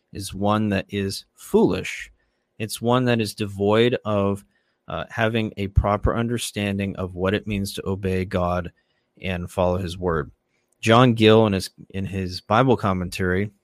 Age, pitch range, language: 30-49, 100-120 Hz, English